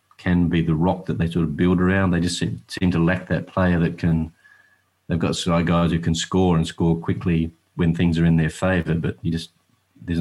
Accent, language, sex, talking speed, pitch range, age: Australian, English, male, 225 wpm, 85-95 Hz, 40-59